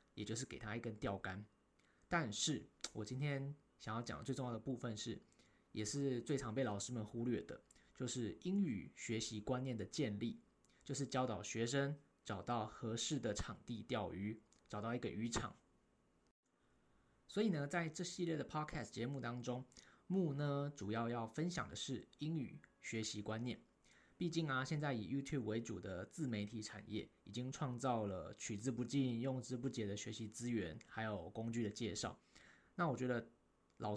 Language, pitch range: Chinese, 110-140 Hz